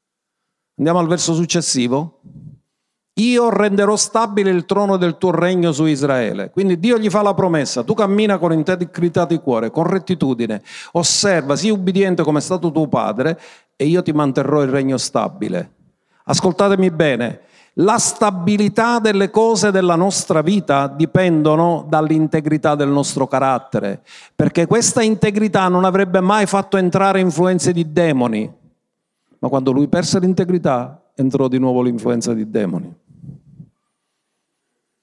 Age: 50-69